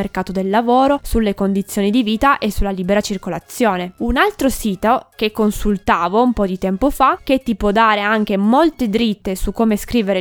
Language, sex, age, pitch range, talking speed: Italian, female, 20-39, 200-260 Hz, 180 wpm